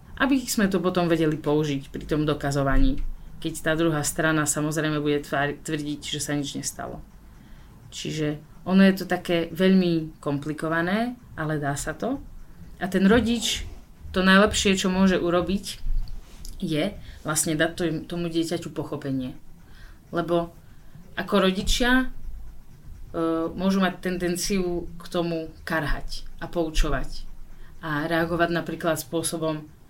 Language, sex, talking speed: Slovak, female, 120 wpm